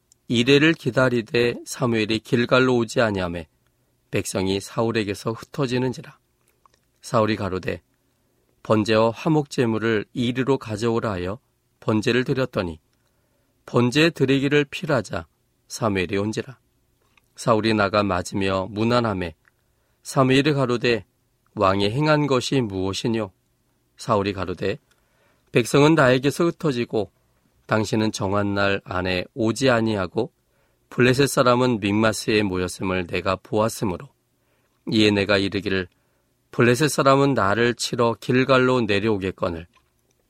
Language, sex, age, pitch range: Korean, male, 40-59, 100-125 Hz